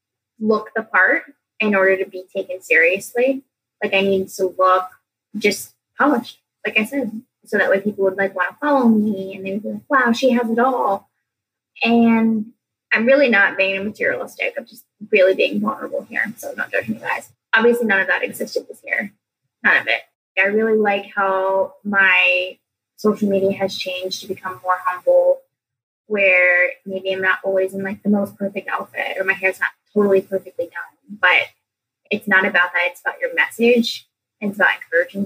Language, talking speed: English, 185 wpm